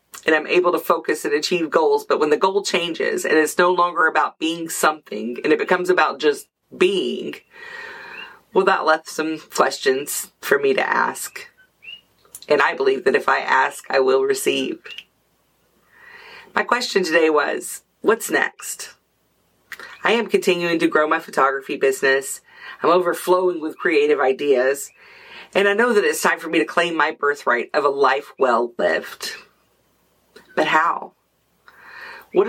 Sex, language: female, English